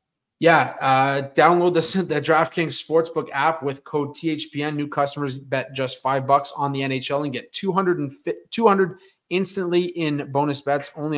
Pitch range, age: 125-150 Hz, 30-49